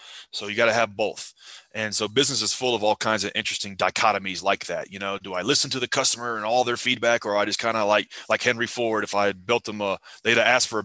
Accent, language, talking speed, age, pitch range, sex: American, English, 275 wpm, 30-49, 105-130 Hz, male